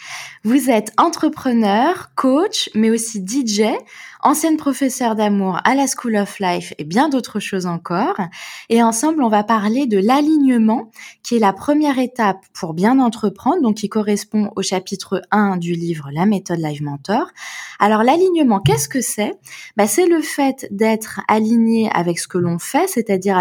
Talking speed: 165 wpm